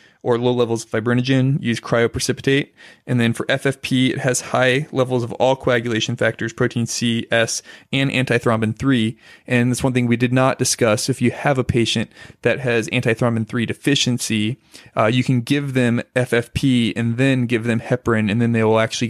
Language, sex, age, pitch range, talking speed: English, male, 20-39, 115-130 Hz, 180 wpm